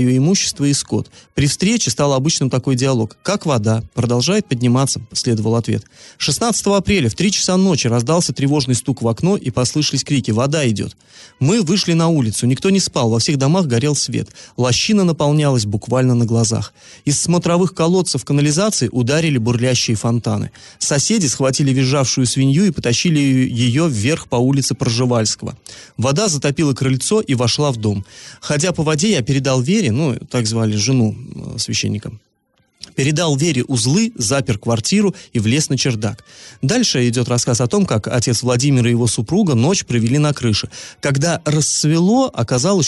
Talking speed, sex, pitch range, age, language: 160 wpm, male, 120-155 Hz, 30-49, Russian